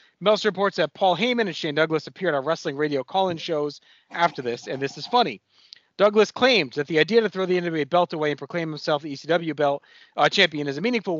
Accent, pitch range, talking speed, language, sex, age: American, 145-185 Hz, 230 wpm, English, male, 30-49